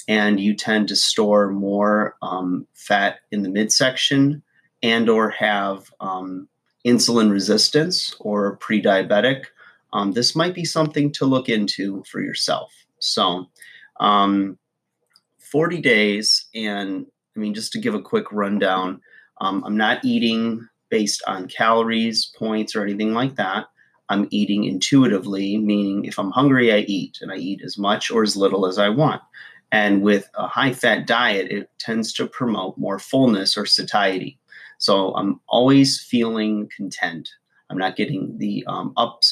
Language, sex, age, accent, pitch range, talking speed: English, male, 30-49, American, 100-120 Hz, 150 wpm